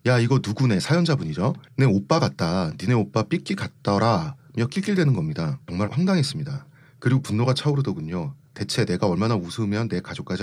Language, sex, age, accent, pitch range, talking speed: English, male, 30-49, Korean, 115-145 Hz, 145 wpm